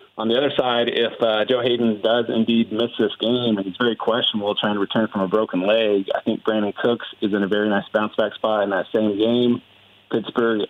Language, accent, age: English, American, 30-49